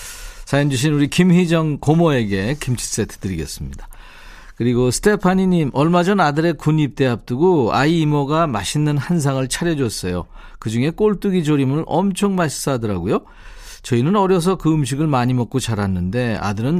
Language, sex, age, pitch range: Korean, male, 40-59, 115-165 Hz